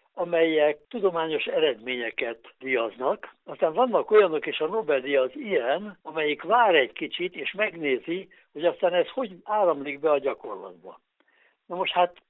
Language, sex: Hungarian, male